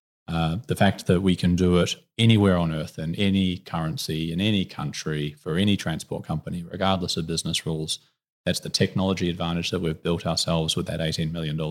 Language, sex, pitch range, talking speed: English, male, 85-110 Hz, 190 wpm